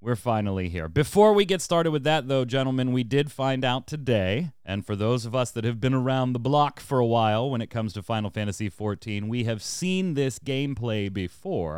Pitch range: 100-135 Hz